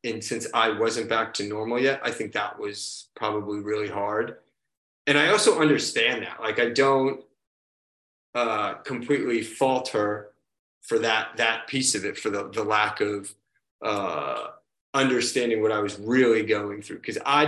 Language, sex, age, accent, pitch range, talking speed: English, male, 30-49, American, 110-140 Hz, 165 wpm